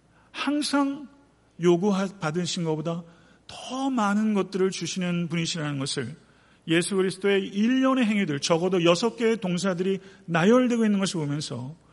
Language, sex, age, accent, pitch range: Korean, male, 50-69, native, 155-220 Hz